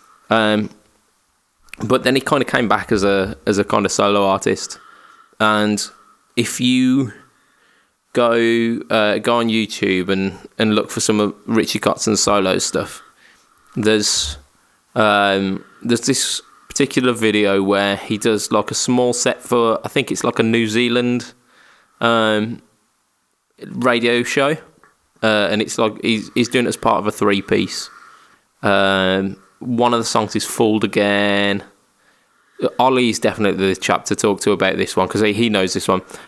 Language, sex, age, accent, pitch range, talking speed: English, male, 20-39, British, 100-120 Hz, 160 wpm